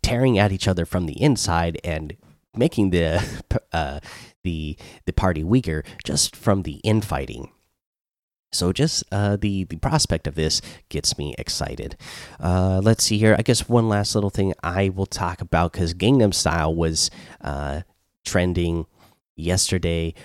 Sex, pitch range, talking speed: male, 80-100 Hz, 150 wpm